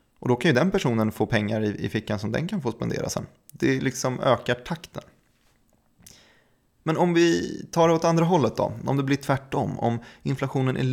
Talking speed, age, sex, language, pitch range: 200 wpm, 20-39, male, Swedish, 110-145 Hz